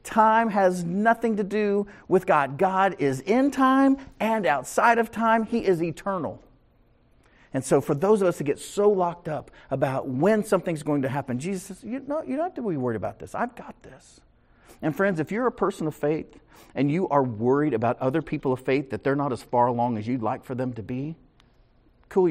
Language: English